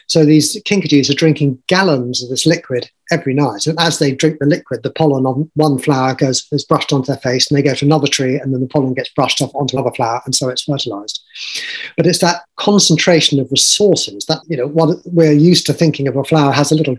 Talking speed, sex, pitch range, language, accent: 240 wpm, male, 130-160 Hz, English, British